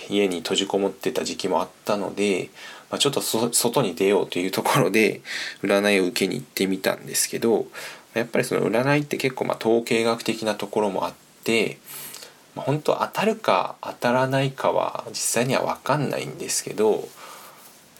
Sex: male